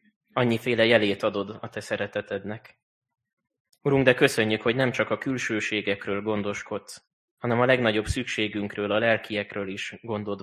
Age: 20-39